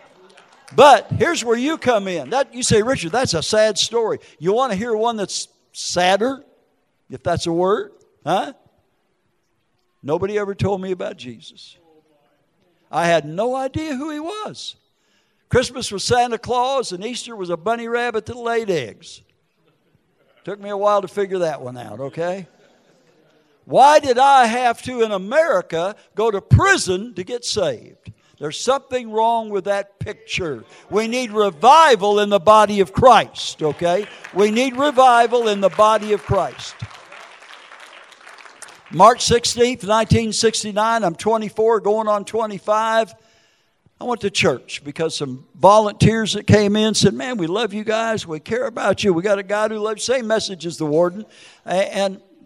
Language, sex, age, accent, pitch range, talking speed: English, male, 60-79, American, 185-240 Hz, 160 wpm